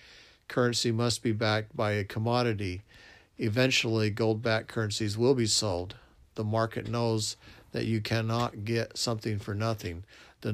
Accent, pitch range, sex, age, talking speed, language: American, 105-115 Hz, male, 50-69, 135 wpm, English